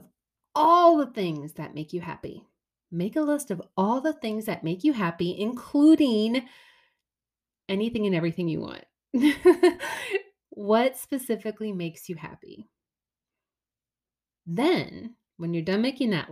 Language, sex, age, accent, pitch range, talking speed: English, female, 30-49, American, 175-250 Hz, 130 wpm